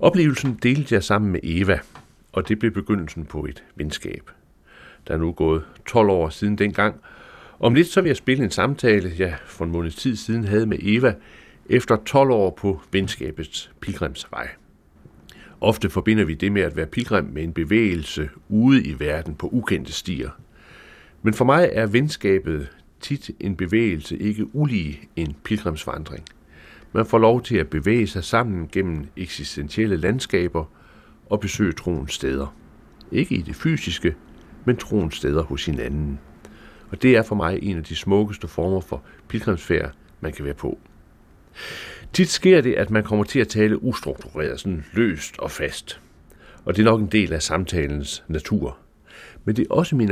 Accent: native